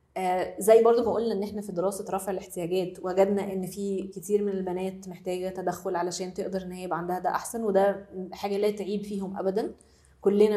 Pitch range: 185-215 Hz